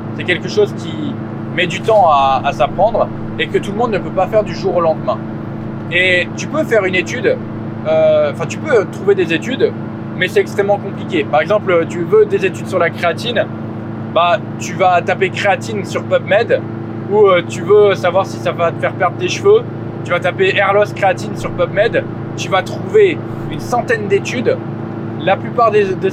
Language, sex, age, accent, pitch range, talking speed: French, male, 20-39, French, 165-215 Hz, 195 wpm